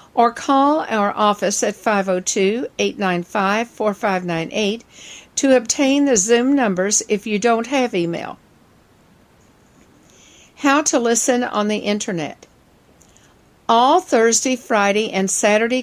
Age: 60-79